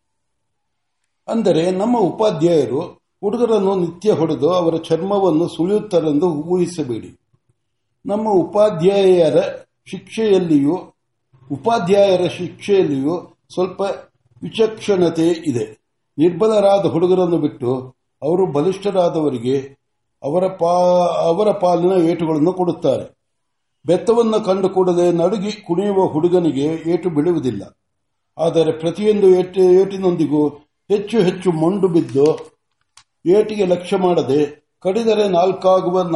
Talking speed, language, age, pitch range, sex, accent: 75 wpm, Kannada, 60-79, 155-195 Hz, male, native